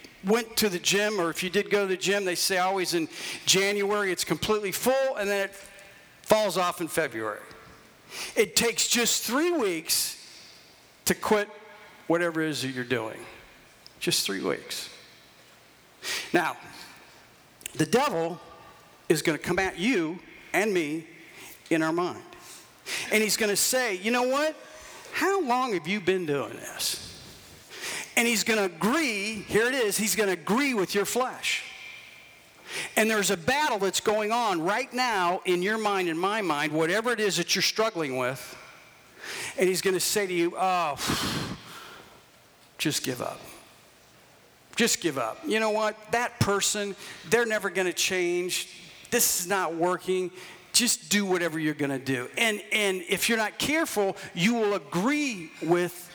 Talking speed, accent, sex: 165 wpm, American, male